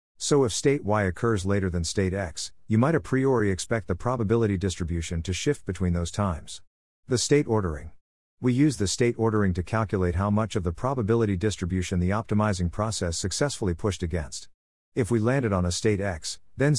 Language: English